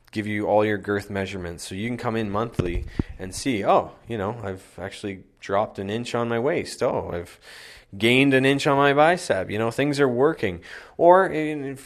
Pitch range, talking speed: 100-120 Hz, 200 wpm